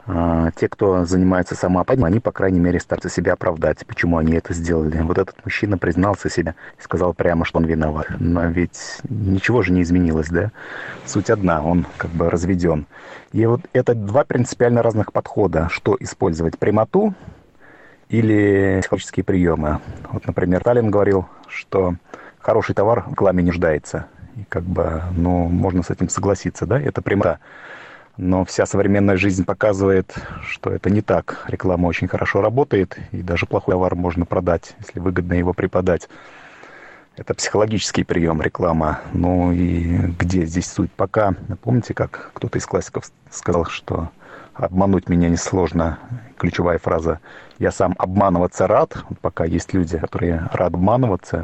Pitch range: 85-100 Hz